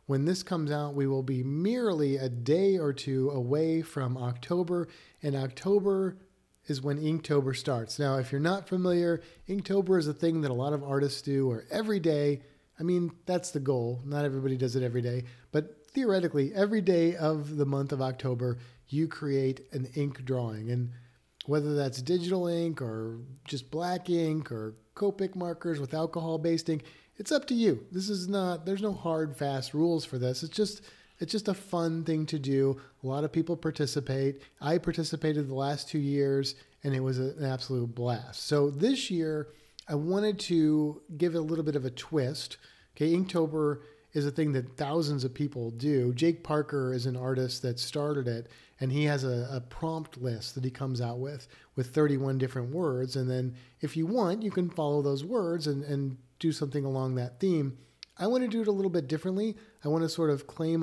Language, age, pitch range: English, 40-59, 135-170 Hz